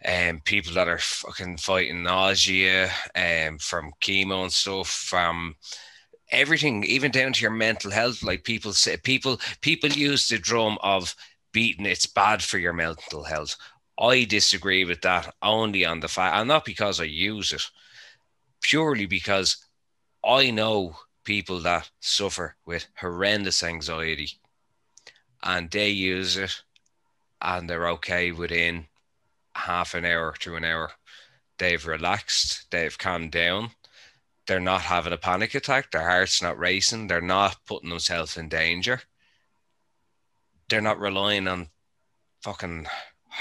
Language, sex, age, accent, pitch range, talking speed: English, male, 20-39, Irish, 85-105 Hz, 140 wpm